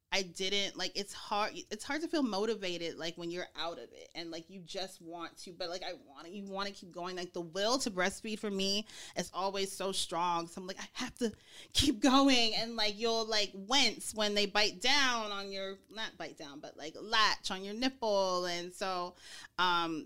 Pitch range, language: 165-200 Hz, English